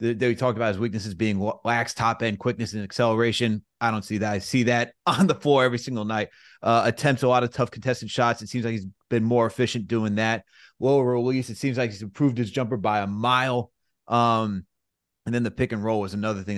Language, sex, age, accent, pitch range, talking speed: English, male, 30-49, American, 105-120 Hz, 230 wpm